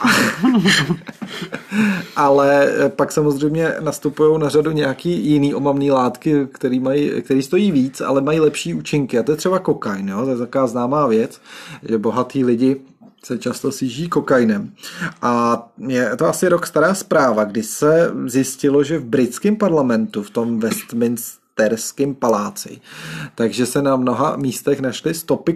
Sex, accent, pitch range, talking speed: male, native, 125-160 Hz, 150 wpm